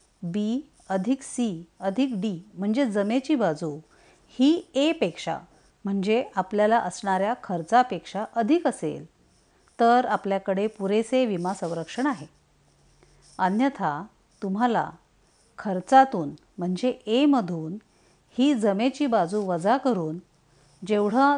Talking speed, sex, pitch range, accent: 95 wpm, female, 190-240 Hz, native